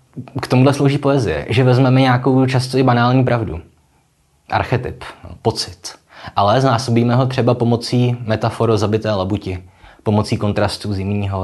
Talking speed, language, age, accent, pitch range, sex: 125 wpm, Czech, 20-39, native, 95-125 Hz, male